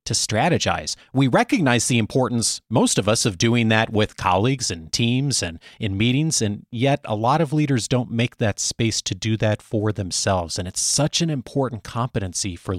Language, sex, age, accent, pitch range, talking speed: English, male, 30-49, American, 105-145 Hz, 190 wpm